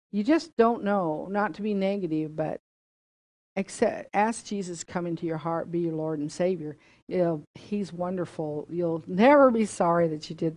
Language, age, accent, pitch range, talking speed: English, 50-69, American, 155-180 Hz, 185 wpm